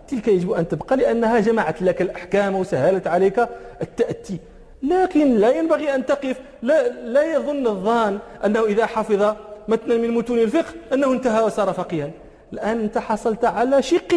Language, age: English, 40-59